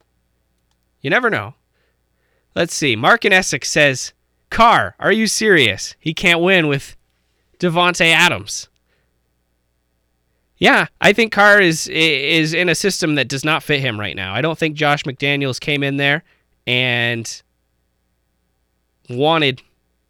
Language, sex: English, male